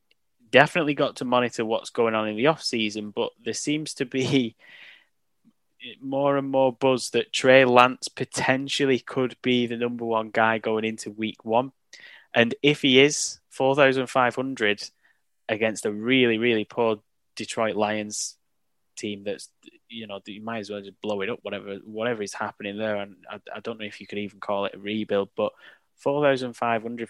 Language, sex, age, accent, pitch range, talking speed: English, male, 10-29, British, 110-135 Hz, 170 wpm